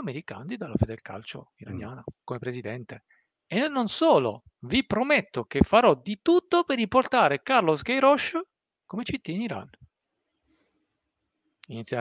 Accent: native